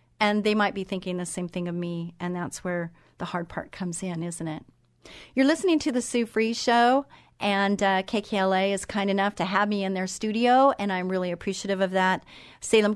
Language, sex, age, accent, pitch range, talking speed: English, female, 40-59, American, 180-205 Hz, 215 wpm